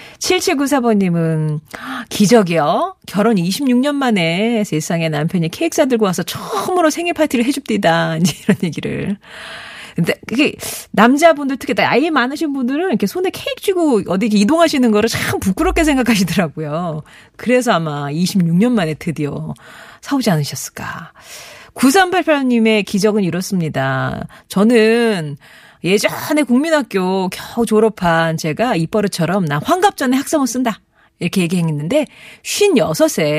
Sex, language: female, Korean